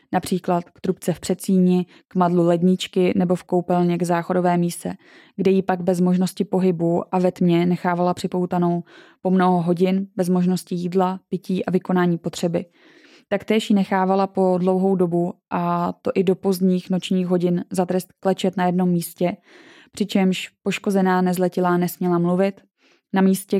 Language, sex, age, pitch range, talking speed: Czech, female, 20-39, 180-195 Hz, 155 wpm